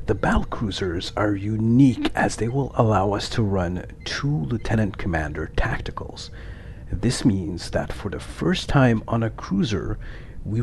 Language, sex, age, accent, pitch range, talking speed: English, male, 50-69, American, 100-125 Hz, 150 wpm